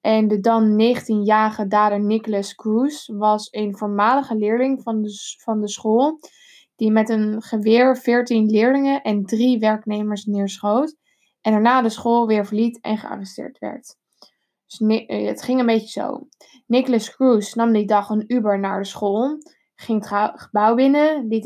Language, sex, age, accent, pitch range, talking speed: Dutch, female, 10-29, Dutch, 210-235 Hz, 155 wpm